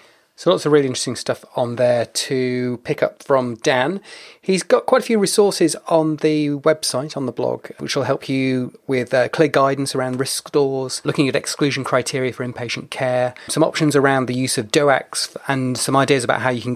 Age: 30-49